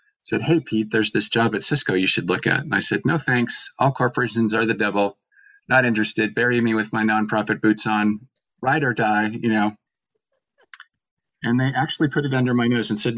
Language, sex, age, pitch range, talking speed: English, male, 40-59, 100-120 Hz, 210 wpm